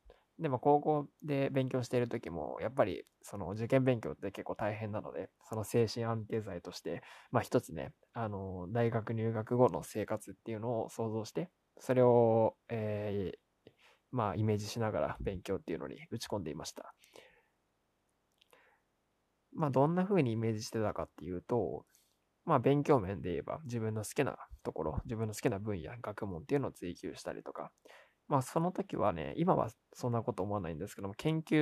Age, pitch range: 20-39, 105-130 Hz